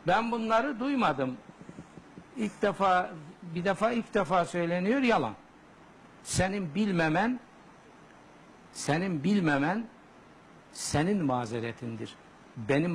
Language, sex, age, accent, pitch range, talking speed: Turkish, male, 60-79, native, 135-195 Hz, 85 wpm